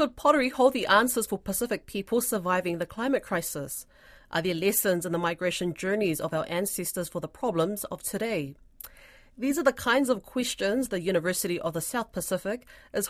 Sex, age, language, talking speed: female, 30-49, English, 185 wpm